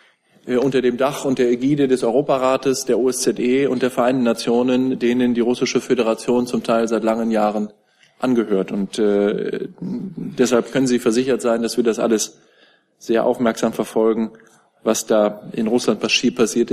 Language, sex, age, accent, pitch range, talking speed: German, male, 20-39, German, 115-130 Hz, 155 wpm